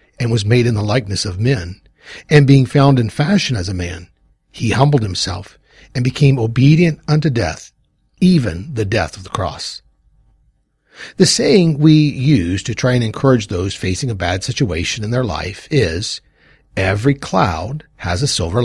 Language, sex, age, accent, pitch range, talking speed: English, male, 50-69, American, 100-140 Hz, 165 wpm